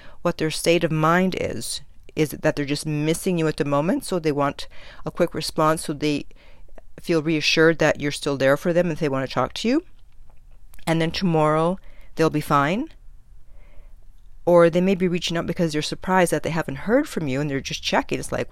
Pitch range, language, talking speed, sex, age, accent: 140-170 Hz, English, 215 wpm, female, 50-69, American